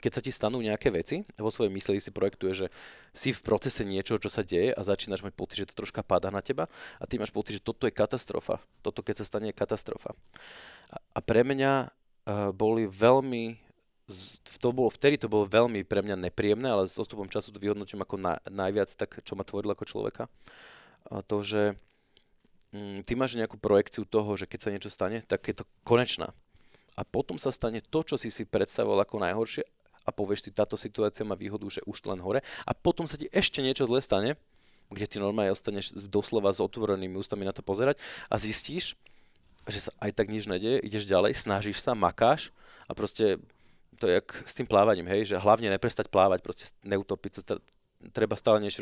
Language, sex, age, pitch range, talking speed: Slovak, male, 30-49, 100-115 Hz, 200 wpm